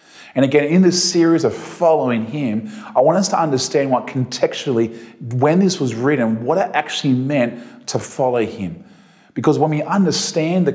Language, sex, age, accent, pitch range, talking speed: English, male, 30-49, Australian, 115-150 Hz, 175 wpm